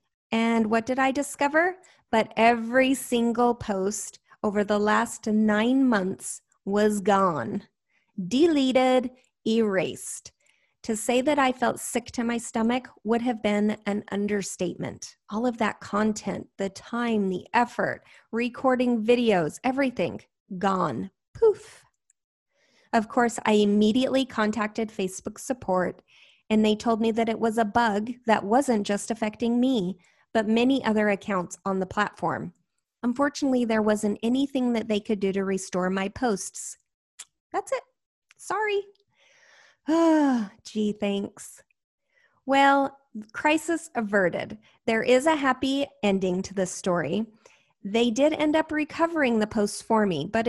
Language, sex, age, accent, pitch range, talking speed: English, female, 30-49, American, 210-260 Hz, 130 wpm